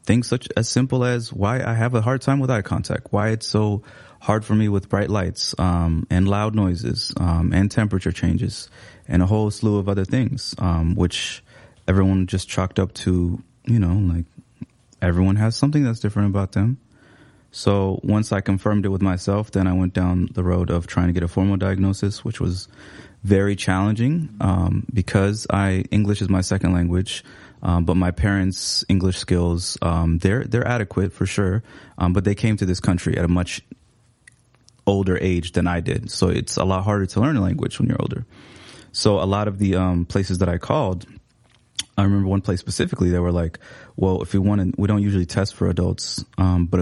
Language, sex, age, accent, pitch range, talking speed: English, male, 20-39, American, 90-105 Hz, 200 wpm